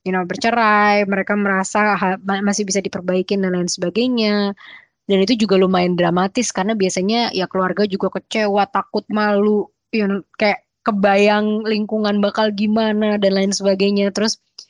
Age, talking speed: 20-39, 145 wpm